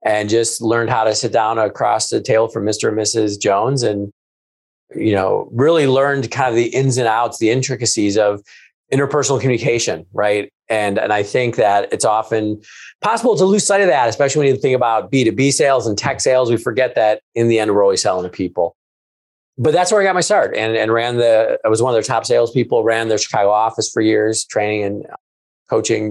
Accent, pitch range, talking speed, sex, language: American, 105-135 Hz, 215 wpm, male, English